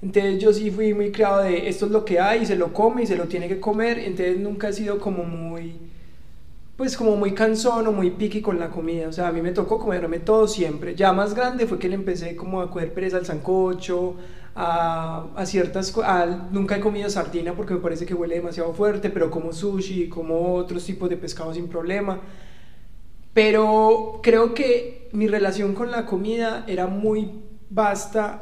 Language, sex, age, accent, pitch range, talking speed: Spanish, male, 20-39, Colombian, 170-210 Hz, 205 wpm